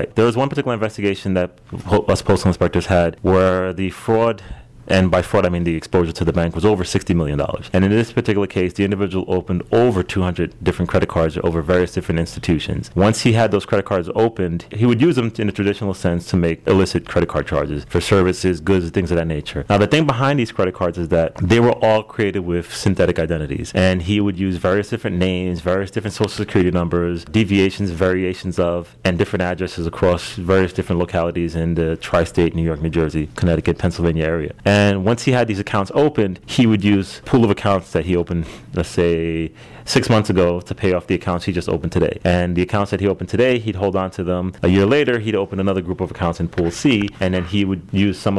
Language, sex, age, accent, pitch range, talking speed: English, male, 30-49, American, 85-105 Hz, 225 wpm